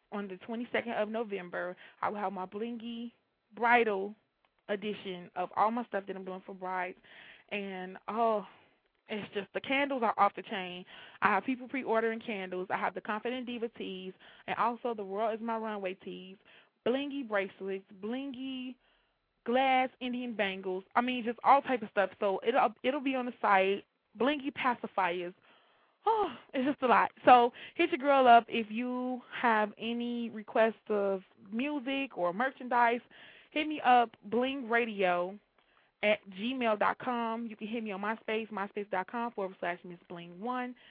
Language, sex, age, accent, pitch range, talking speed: English, female, 20-39, American, 200-255 Hz, 165 wpm